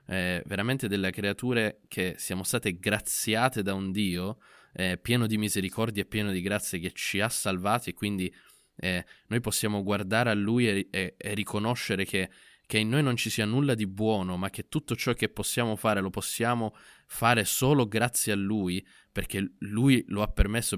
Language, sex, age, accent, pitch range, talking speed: Italian, male, 20-39, native, 100-115 Hz, 180 wpm